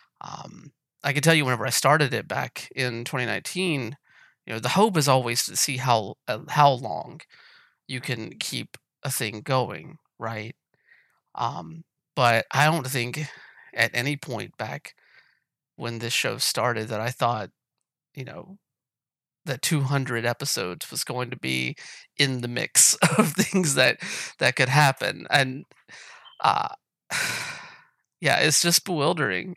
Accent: American